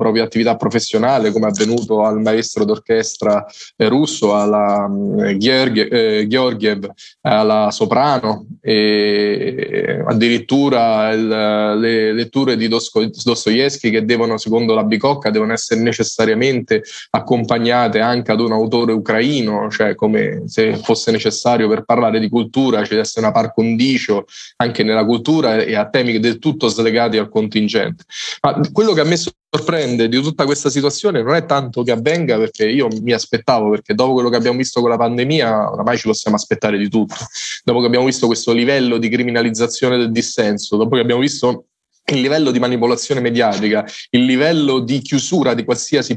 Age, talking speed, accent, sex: 20-39, 155 wpm, native, male